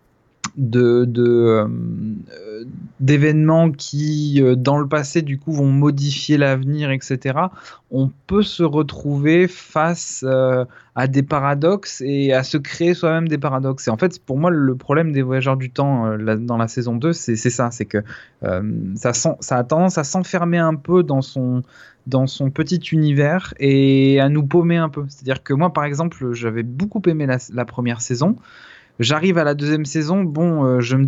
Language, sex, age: French, male, 20-39